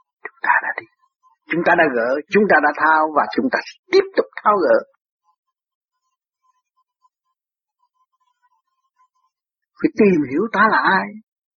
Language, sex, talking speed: Vietnamese, male, 115 wpm